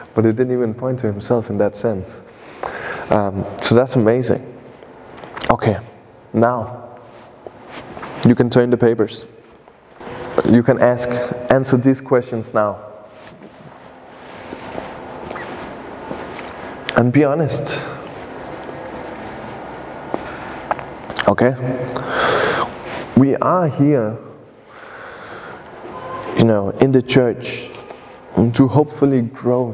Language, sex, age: English, male, 20-39